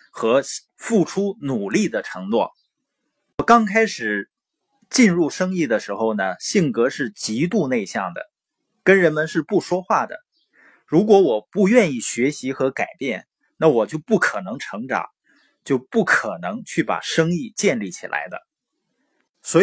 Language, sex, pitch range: Chinese, male, 160-230 Hz